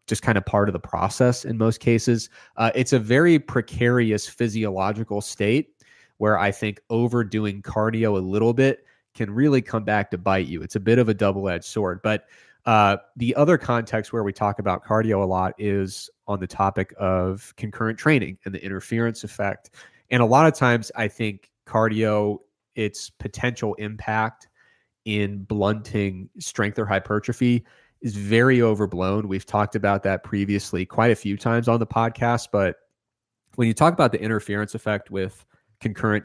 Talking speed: 170 wpm